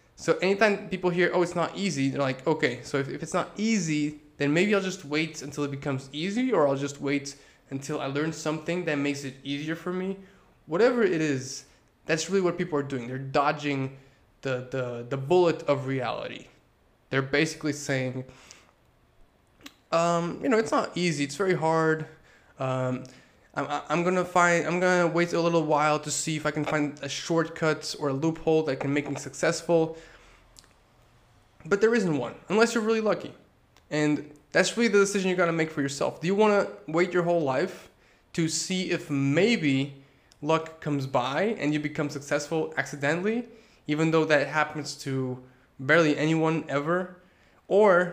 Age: 20-39